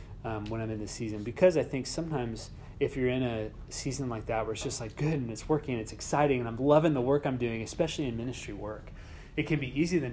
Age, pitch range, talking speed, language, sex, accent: 30-49, 105-140 Hz, 260 wpm, English, male, American